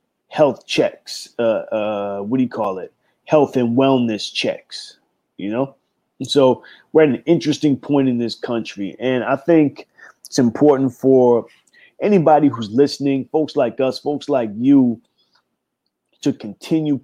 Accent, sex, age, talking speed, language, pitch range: American, male, 20-39, 145 wpm, English, 115-150 Hz